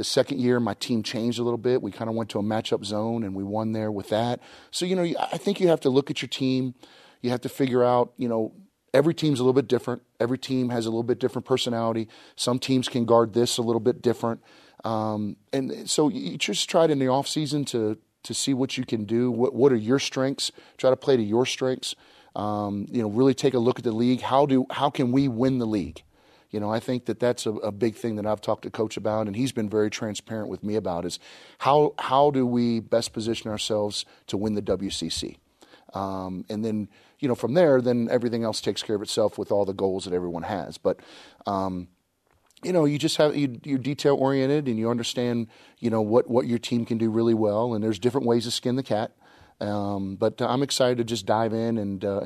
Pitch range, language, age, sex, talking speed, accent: 110-130 Hz, English, 30-49, male, 240 wpm, American